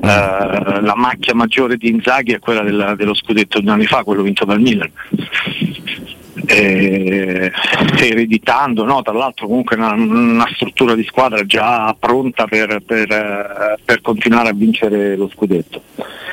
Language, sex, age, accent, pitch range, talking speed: Italian, male, 50-69, native, 105-135 Hz, 125 wpm